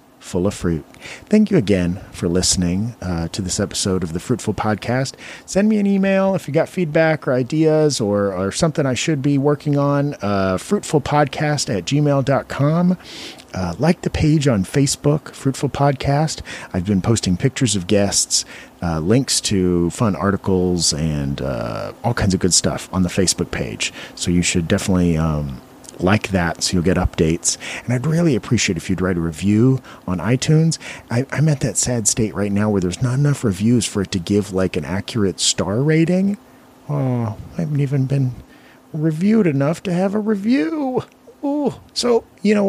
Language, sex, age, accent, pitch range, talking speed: English, male, 40-59, American, 90-145 Hz, 180 wpm